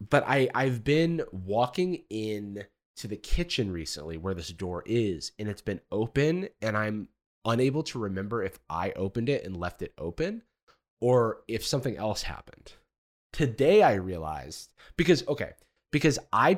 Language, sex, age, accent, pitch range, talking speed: English, male, 30-49, American, 95-130 Hz, 155 wpm